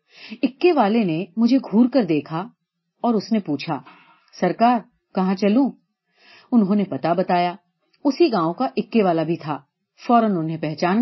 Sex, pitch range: female, 170-235 Hz